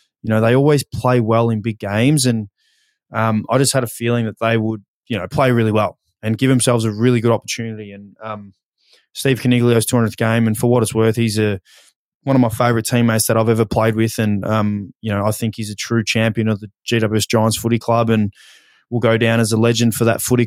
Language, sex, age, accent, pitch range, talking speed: English, male, 20-39, Australian, 110-125 Hz, 235 wpm